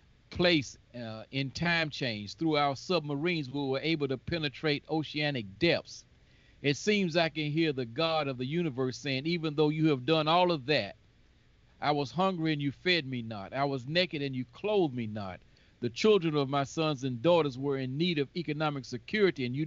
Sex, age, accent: male, 50-69, American